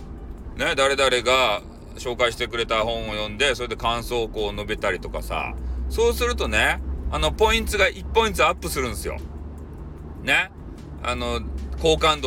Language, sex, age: Japanese, male, 40-59